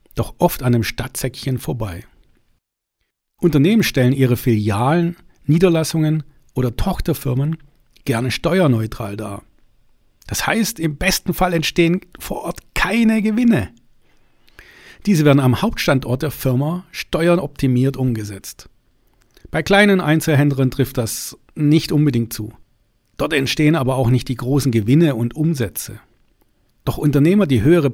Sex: male